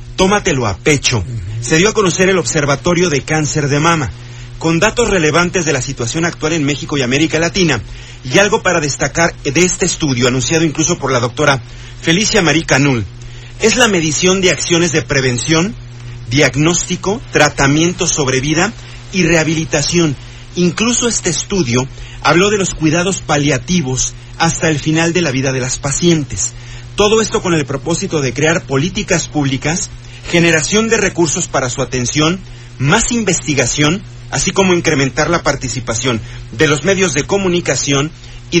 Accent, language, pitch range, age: Mexican, Spanish, 130-170 Hz, 40-59